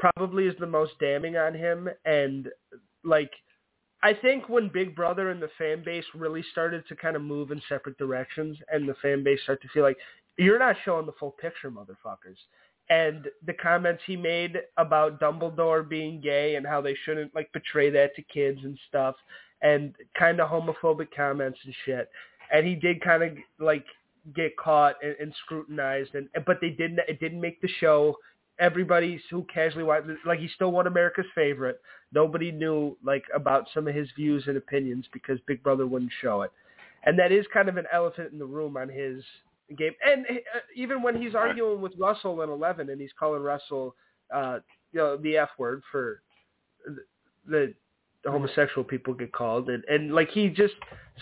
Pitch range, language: 140-170 Hz, English